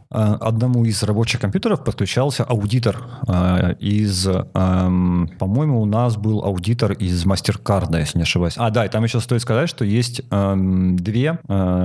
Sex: male